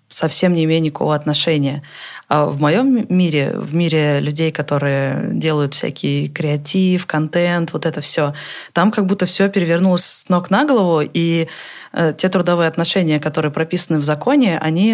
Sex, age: female, 20-39